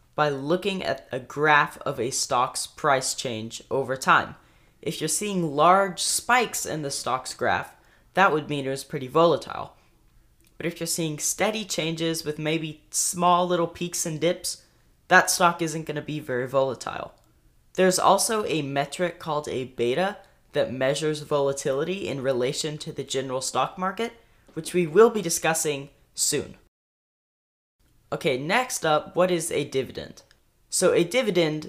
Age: 10-29